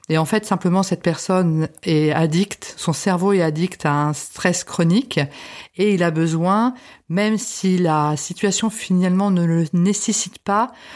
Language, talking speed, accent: French, 160 wpm, French